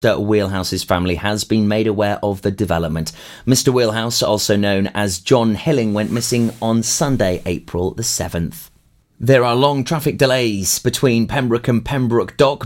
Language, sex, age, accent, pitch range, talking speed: English, male, 30-49, British, 105-135 Hz, 160 wpm